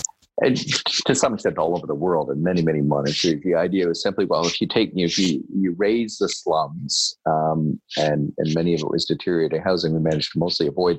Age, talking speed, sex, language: 40-59, 235 wpm, male, English